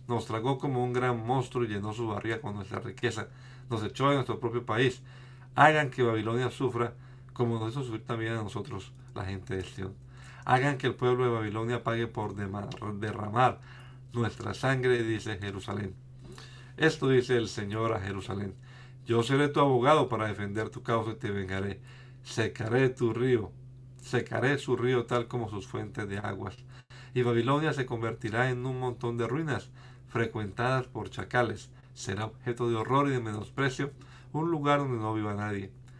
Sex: male